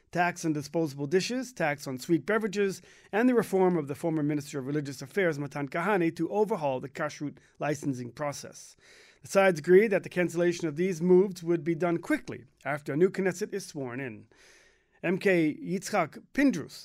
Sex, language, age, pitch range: male, English, 40-59, 150-190 Hz